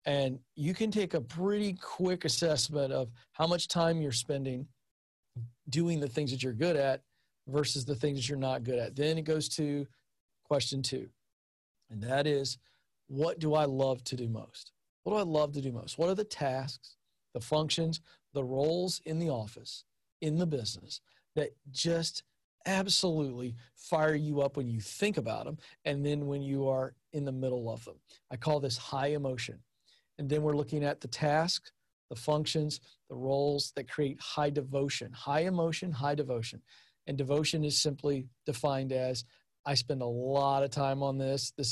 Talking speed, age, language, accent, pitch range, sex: 180 wpm, 40-59, English, American, 130-155 Hz, male